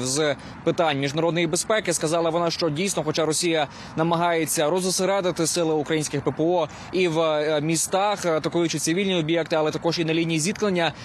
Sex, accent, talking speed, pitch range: male, native, 145 wpm, 155-180 Hz